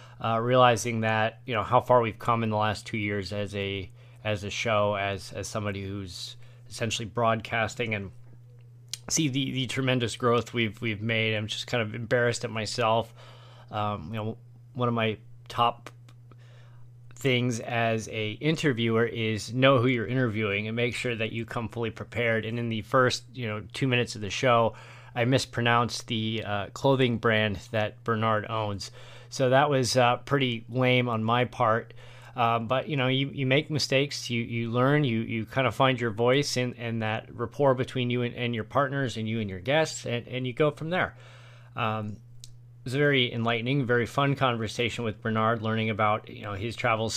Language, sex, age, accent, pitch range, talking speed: English, male, 30-49, American, 110-125 Hz, 190 wpm